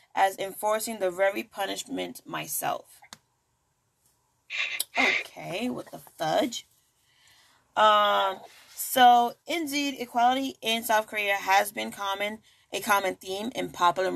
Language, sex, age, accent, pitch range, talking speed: English, female, 20-39, American, 185-225 Hz, 105 wpm